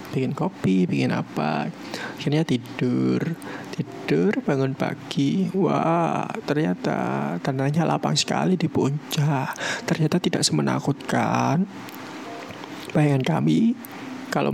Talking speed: 90 wpm